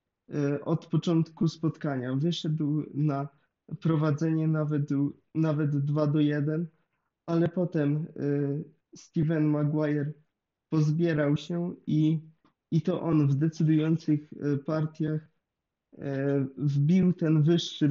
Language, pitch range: Polish, 140-160 Hz